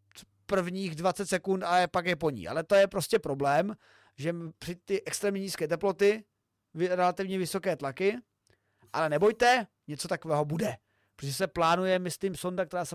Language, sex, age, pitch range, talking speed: Czech, male, 30-49, 155-215 Hz, 160 wpm